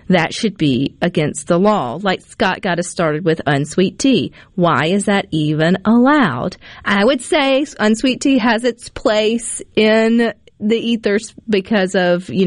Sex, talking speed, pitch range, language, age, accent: female, 160 wpm, 170-215 Hz, English, 40-59, American